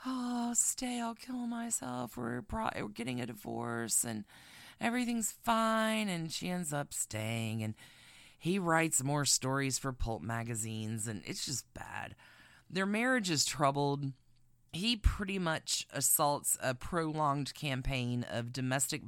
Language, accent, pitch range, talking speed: English, American, 125-185 Hz, 135 wpm